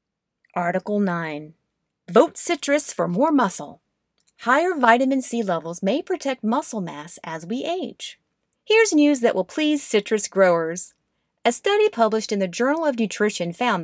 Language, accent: English, American